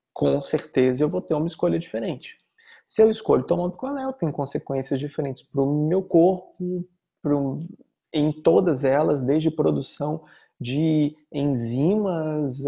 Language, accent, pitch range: Portuguese, Brazilian, 140-185 Hz